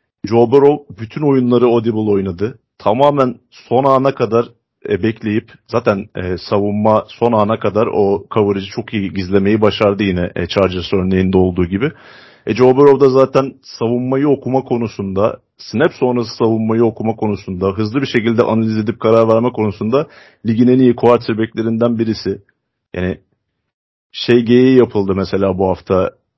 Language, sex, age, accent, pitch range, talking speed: Turkish, male, 40-59, native, 100-125 Hz, 135 wpm